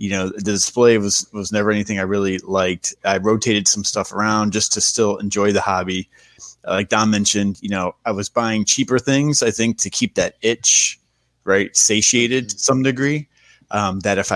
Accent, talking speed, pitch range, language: American, 190 wpm, 95-110 Hz, English